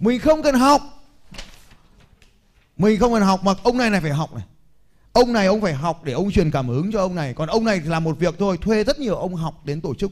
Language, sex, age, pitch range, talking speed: Vietnamese, male, 20-39, 150-205 Hz, 260 wpm